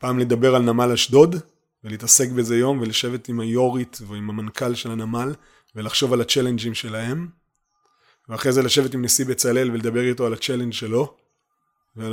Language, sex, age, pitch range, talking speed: Hebrew, male, 30-49, 110-135 Hz, 155 wpm